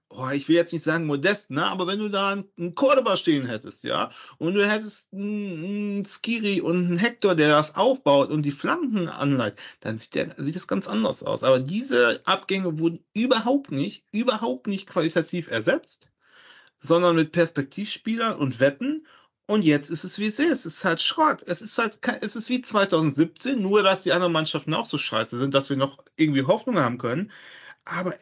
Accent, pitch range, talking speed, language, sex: German, 150-210 Hz, 190 wpm, German, male